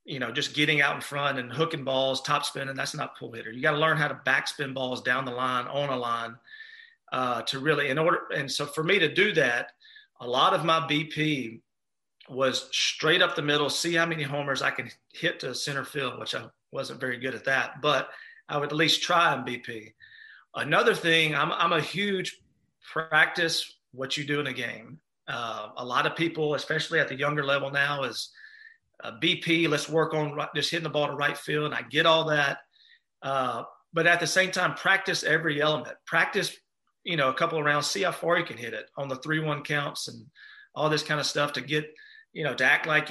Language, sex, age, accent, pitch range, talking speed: English, male, 40-59, American, 140-165 Hz, 225 wpm